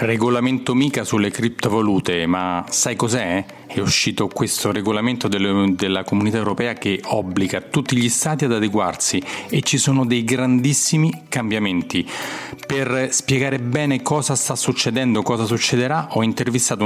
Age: 40-59